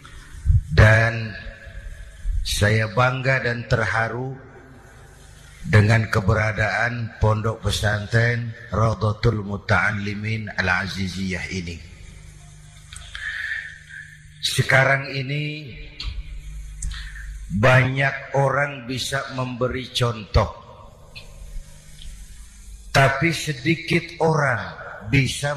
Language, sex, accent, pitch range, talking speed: Indonesian, male, native, 90-150 Hz, 55 wpm